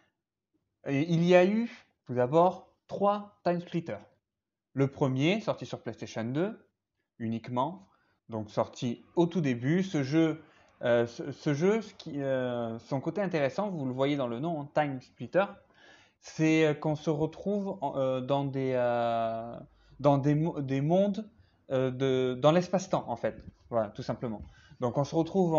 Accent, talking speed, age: French, 155 wpm, 20-39